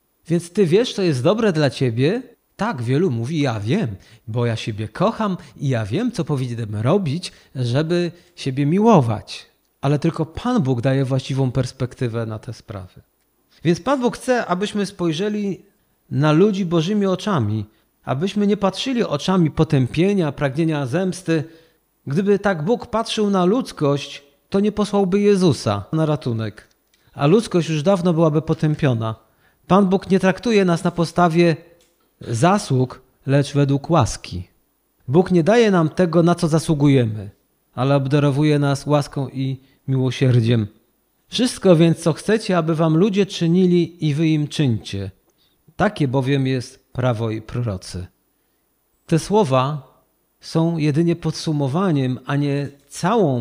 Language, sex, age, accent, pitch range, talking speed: Polish, male, 40-59, native, 130-180 Hz, 135 wpm